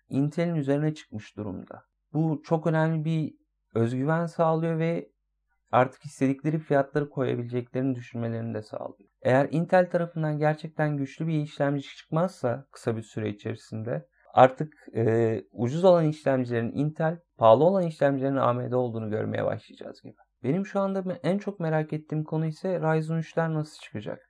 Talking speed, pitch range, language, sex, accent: 140 wpm, 130-175 Hz, Turkish, male, native